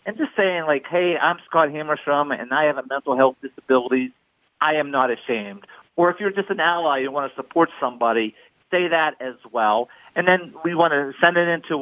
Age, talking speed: 40-59, 220 wpm